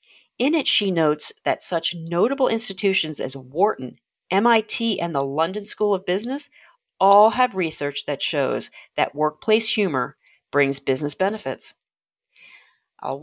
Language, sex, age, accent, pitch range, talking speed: English, female, 40-59, American, 155-220 Hz, 130 wpm